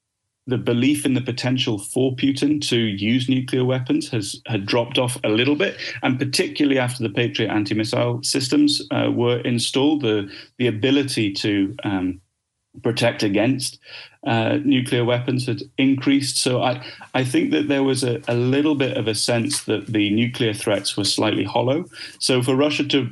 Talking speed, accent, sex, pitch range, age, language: 170 wpm, British, male, 105-130 Hz, 30-49, English